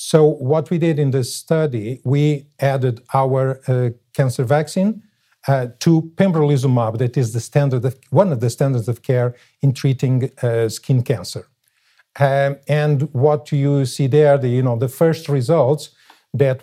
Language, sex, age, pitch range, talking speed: English, male, 50-69, 125-145 Hz, 160 wpm